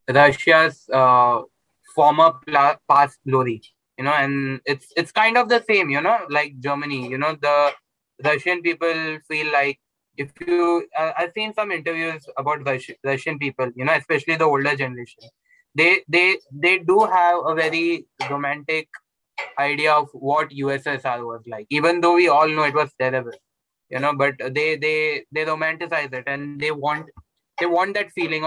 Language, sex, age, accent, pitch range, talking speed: Hindi, male, 20-39, native, 140-165 Hz, 170 wpm